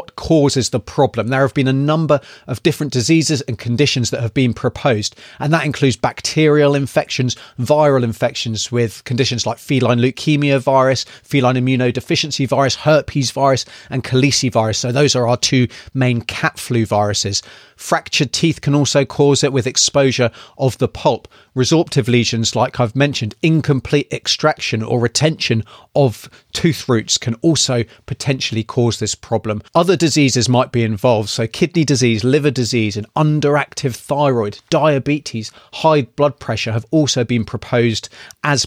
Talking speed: 150 wpm